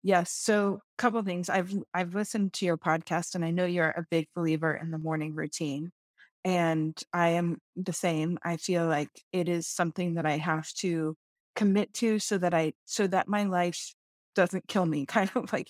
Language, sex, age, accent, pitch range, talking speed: English, female, 30-49, American, 165-205 Hz, 205 wpm